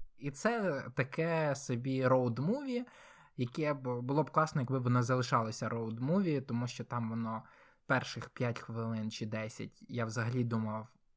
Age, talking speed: 20-39, 145 wpm